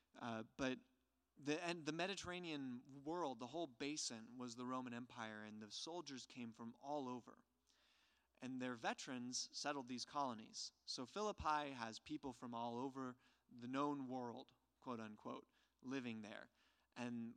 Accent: American